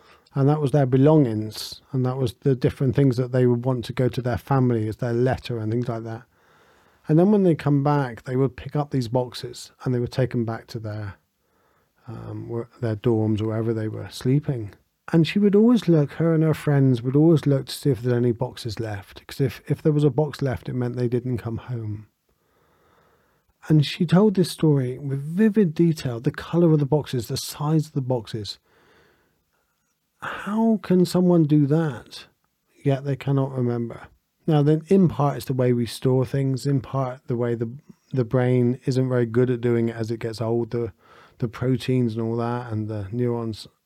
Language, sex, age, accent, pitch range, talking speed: English, male, 40-59, British, 115-145 Hz, 205 wpm